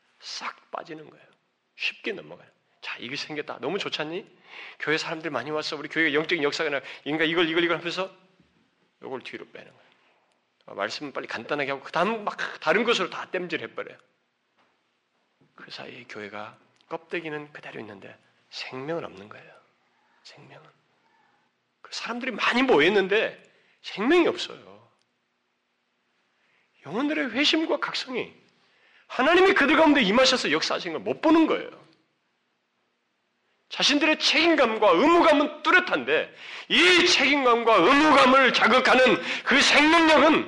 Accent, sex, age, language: native, male, 40-59, Korean